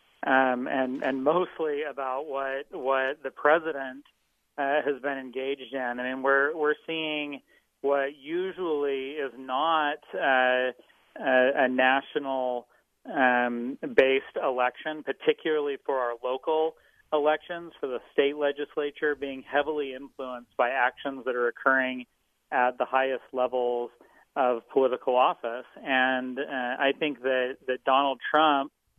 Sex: male